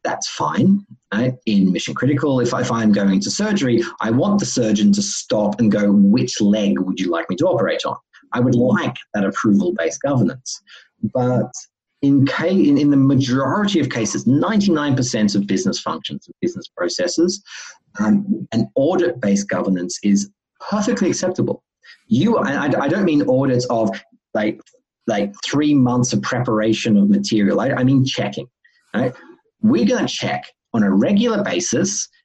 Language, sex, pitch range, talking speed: English, male, 105-155 Hz, 170 wpm